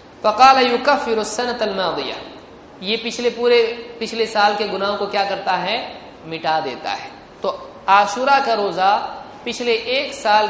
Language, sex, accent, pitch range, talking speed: Hindi, male, native, 190-225 Hz, 130 wpm